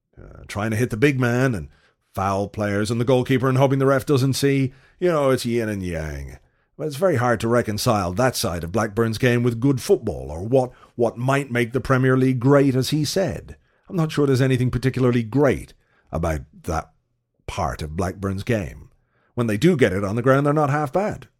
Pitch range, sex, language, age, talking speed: 100-135 Hz, male, English, 40-59, 215 wpm